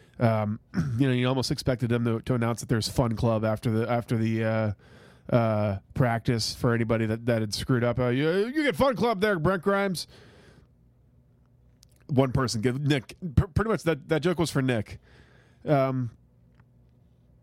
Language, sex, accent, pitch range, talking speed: English, male, American, 115-155 Hz, 170 wpm